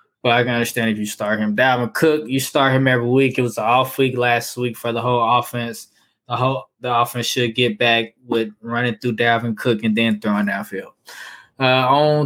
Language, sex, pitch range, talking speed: English, male, 115-135 Hz, 215 wpm